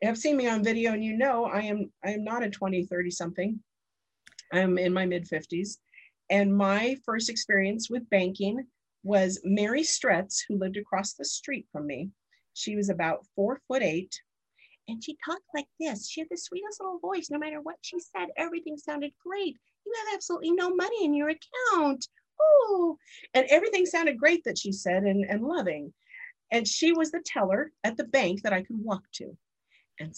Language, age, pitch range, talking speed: English, 50-69, 190-290 Hz, 190 wpm